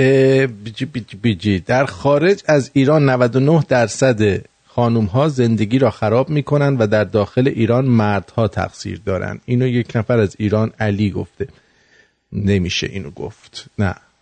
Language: English